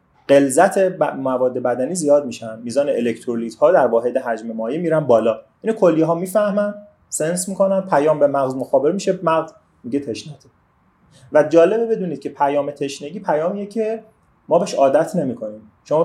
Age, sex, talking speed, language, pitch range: 30-49, male, 155 wpm, Persian, 125-180 Hz